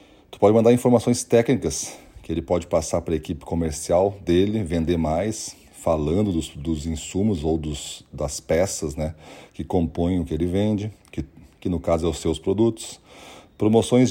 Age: 40-59